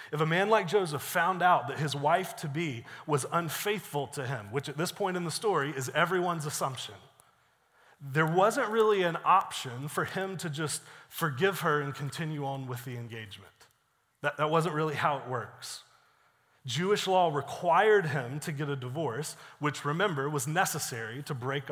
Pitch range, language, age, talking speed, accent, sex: 140-175 Hz, English, 30-49, 170 wpm, American, male